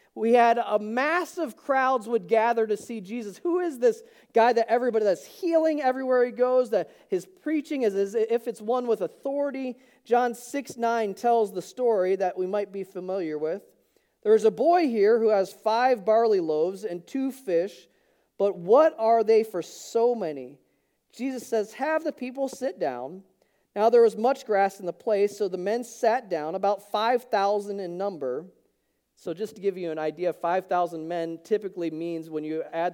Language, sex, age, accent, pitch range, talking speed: English, male, 40-59, American, 195-255 Hz, 185 wpm